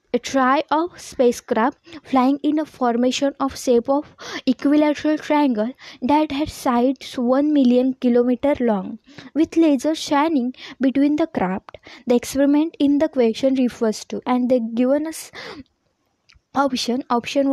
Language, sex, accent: English, female, Indian